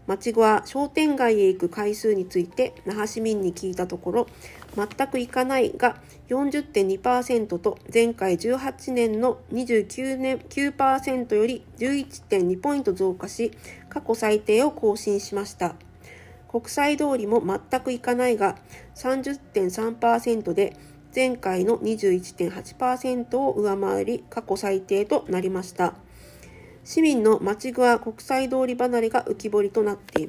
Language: Japanese